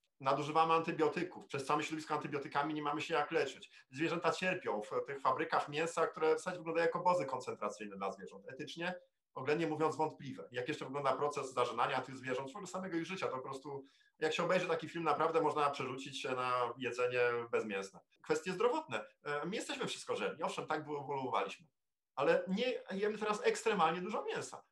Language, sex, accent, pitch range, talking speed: English, male, Polish, 145-230 Hz, 175 wpm